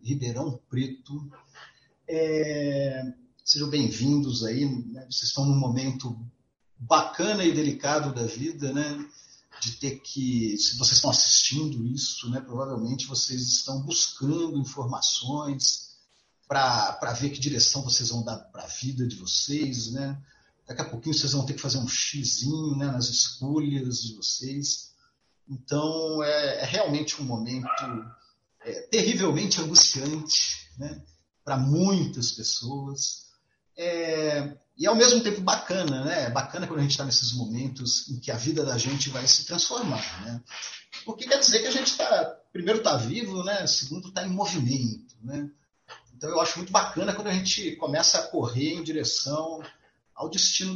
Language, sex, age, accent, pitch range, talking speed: Portuguese, male, 50-69, Brazilian, 125-160 Hz, 150 wpm